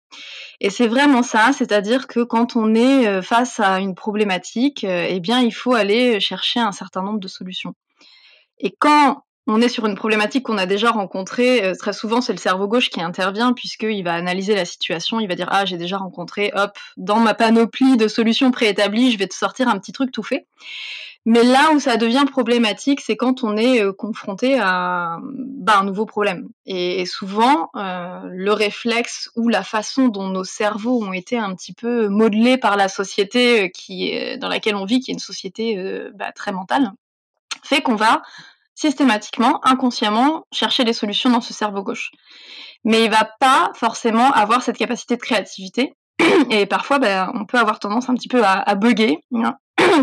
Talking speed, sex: 190 wpm, female